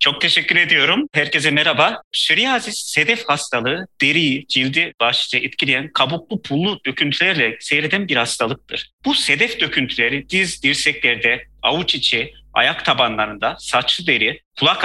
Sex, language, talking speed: male, Turkish, 120 wpm